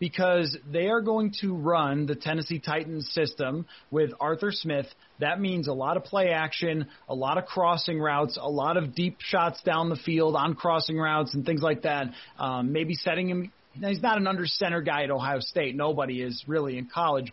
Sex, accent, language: male, American, English